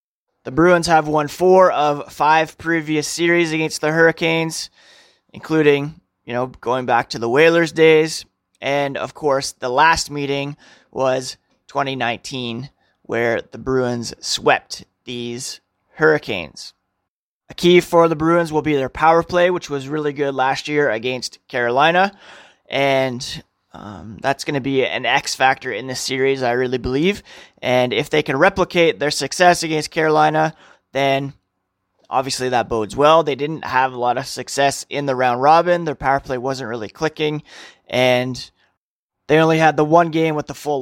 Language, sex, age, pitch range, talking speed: English, male, 20-39, 125-165 Hz, 160 wpm